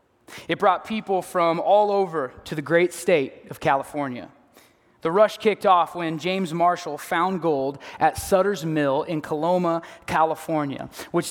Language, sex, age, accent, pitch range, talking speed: English, male, 20-39, American, 165-225 Hz, 150 wpm